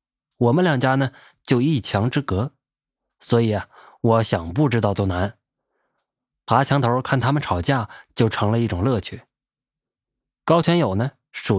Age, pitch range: 20-39, 110-145 Hz